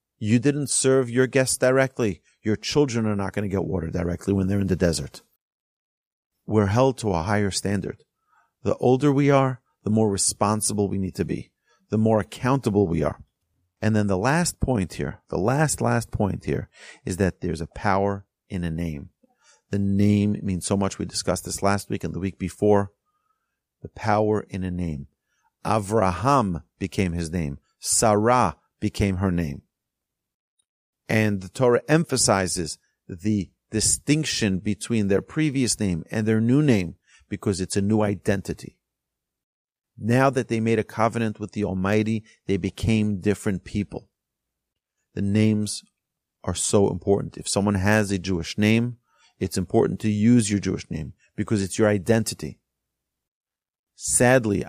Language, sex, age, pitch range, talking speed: English, male, 40-59, 95-115 Hz, 155 wpm